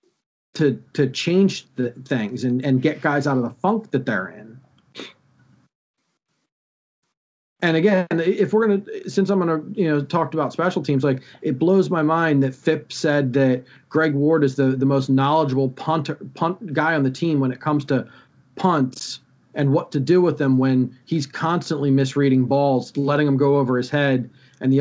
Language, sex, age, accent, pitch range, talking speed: English, male, 40-59, American, 135-160 Hz, 185 wpm